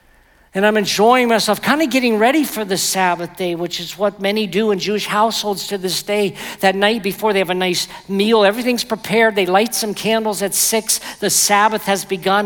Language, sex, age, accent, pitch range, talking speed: English, male, 50-69, American, 165-205 Hz, 205 wpm